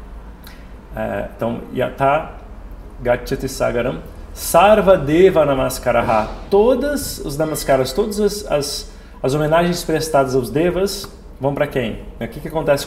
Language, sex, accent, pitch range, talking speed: Portuguese, male, Brazilian, 135-185 Hz, 120 wpm